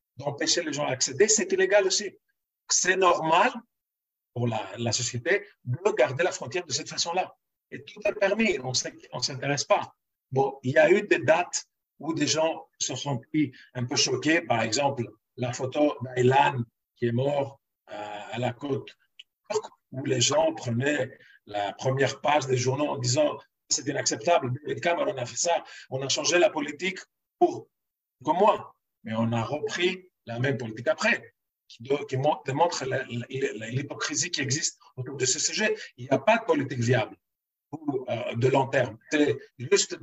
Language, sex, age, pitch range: French, male, 50-69, 125-175 Hz